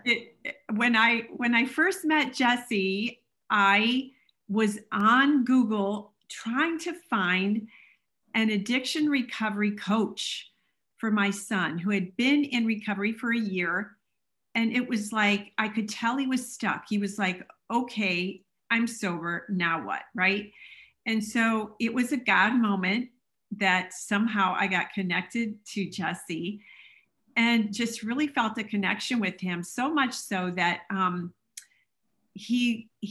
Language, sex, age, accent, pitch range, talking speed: English, female, 40-59, American, 195-235 Hz, 140 wpm